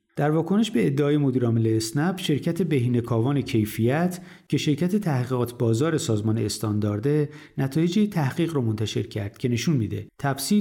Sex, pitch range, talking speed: male, 115-150 Hz, 135 wpm